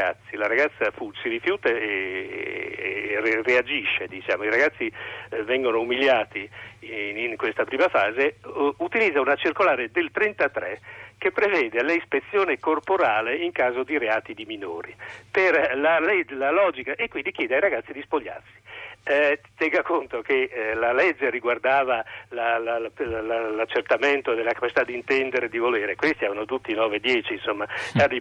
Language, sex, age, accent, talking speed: Italian, male, 50-69, native, 130 wpm